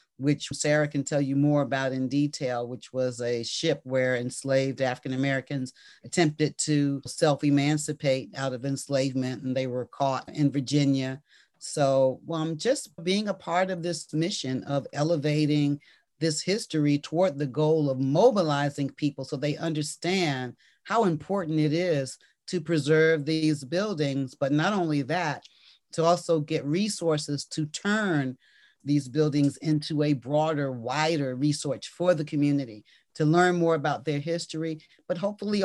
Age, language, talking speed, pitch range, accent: 40-59, English, 145 wpm, 135-165 Hz, American